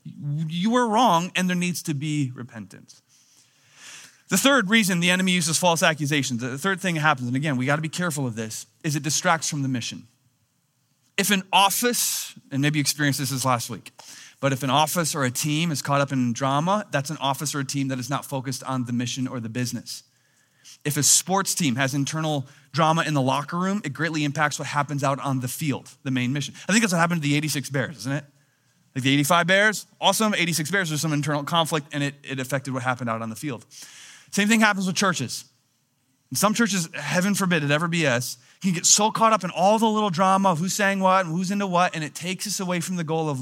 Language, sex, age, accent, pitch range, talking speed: English, male, 30-49, American, 135-180 Hz, 235 wpm